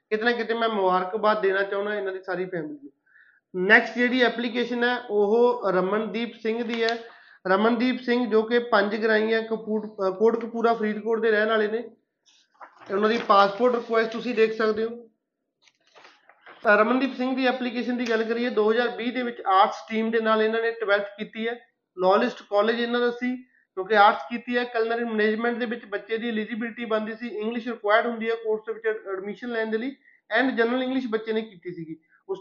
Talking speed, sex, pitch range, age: 165 wpm, male, 205-235 Hz, 30-49